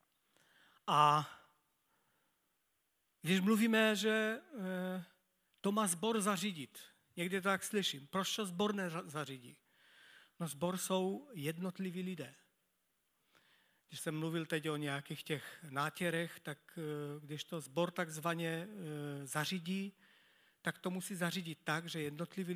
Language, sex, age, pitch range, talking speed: Czech, male, 40-59, 150-185 Hz, 110 wpm